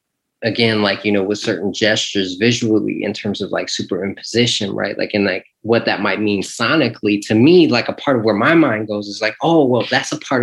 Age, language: 20-39, English